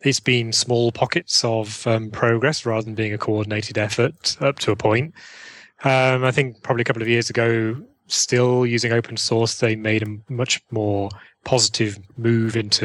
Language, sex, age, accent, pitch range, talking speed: English, male, 30-49, British, 110-130 Hz, 175 wpm